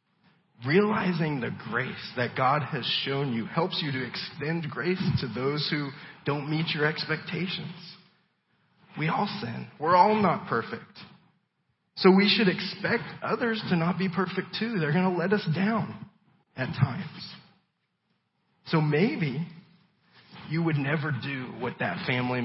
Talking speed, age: 145 wpm, 40-59